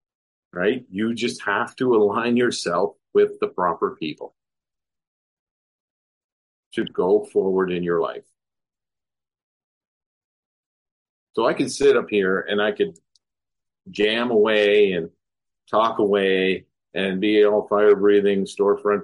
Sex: male